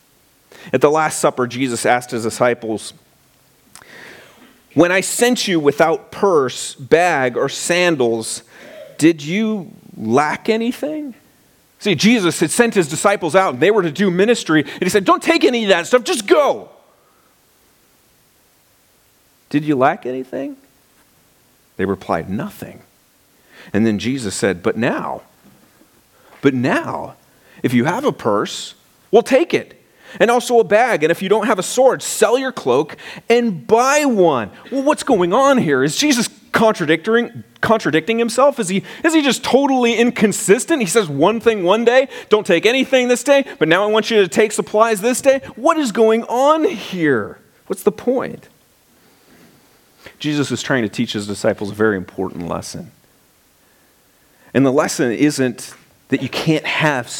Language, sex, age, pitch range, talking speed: English, male, 40-59, 150-240 Hz, 155 wpm